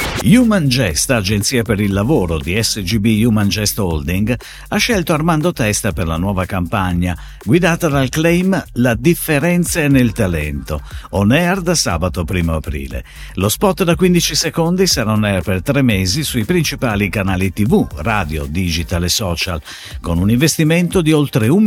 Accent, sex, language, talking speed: native, male, Italian, 160 wpm